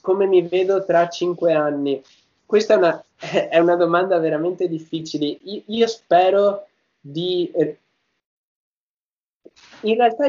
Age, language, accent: 20-39, Italian, native